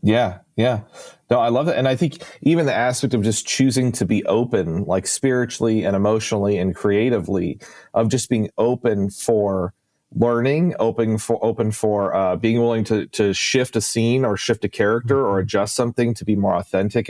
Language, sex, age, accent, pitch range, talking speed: English, male, 40-59, American, 105-125 Hz, 185 wpm